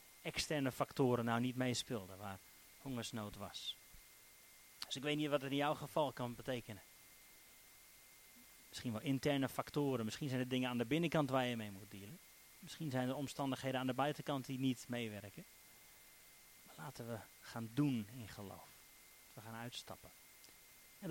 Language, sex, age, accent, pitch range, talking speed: Dutch, male, 30-49, Dutch, 115-145 Hz, 160 wpm